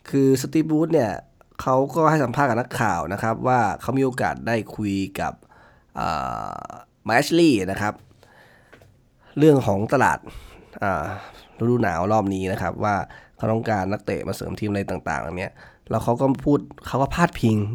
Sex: male